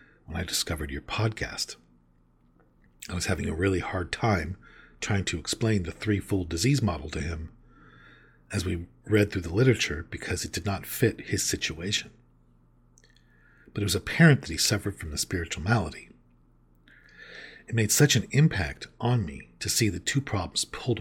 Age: 40-59